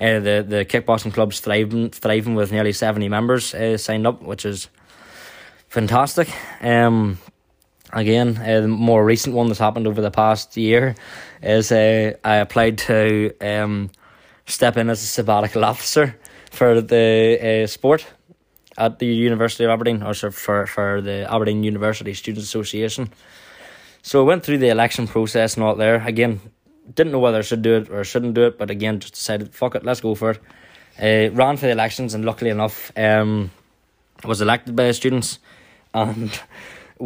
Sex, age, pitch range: male, 10-29, 105-115 Hz